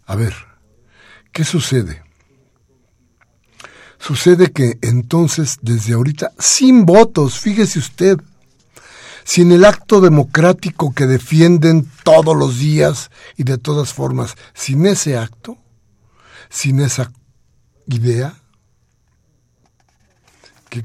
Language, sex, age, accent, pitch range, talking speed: Spanish, male, 60-79, Mexican, 110-150 Hz, 95 wpm